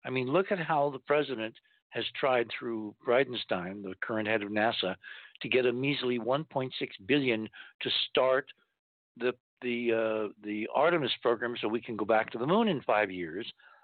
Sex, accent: male, American